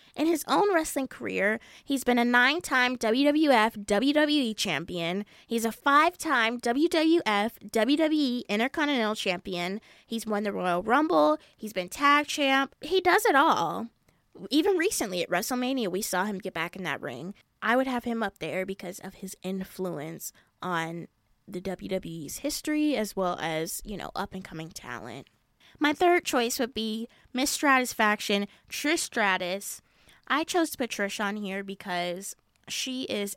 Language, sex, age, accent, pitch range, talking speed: English, female, 10-29, American, 190-265 Hz, 150 wpm